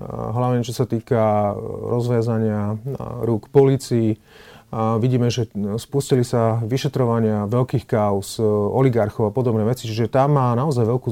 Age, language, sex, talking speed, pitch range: 30-49, Slovak, male, 125 wpm, 110-125 Hz